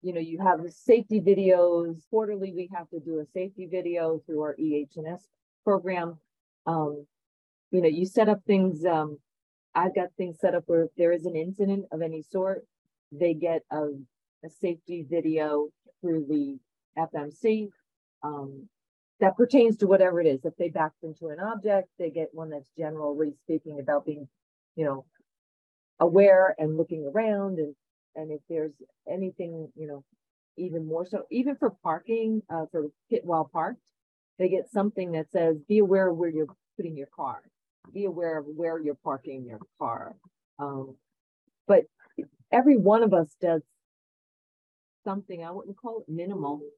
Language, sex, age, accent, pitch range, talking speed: English, female, 40-59, American, 155-190 Hz, 165 wpm